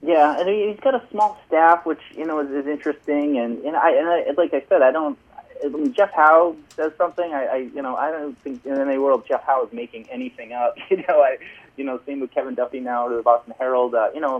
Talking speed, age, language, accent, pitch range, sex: 265 wpm, 30-49, English, American, 115-150 Hz, male